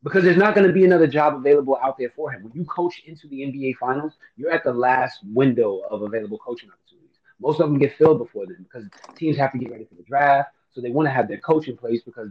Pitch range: 120-170 Hz